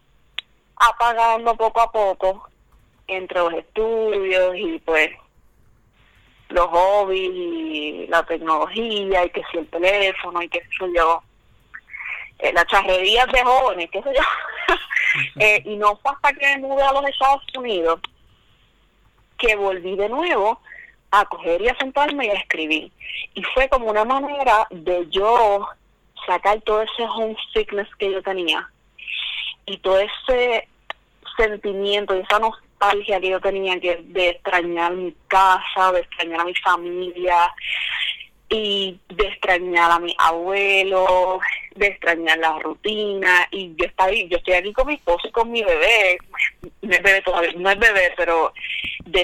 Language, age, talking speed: Spanish, 30-49, 145 wpm